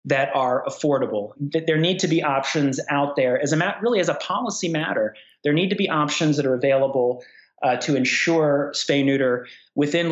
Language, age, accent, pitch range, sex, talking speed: English, 30-49, American, 125-150 Hz, male, 190 wpm